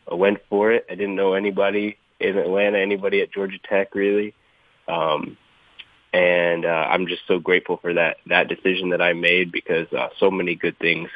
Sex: male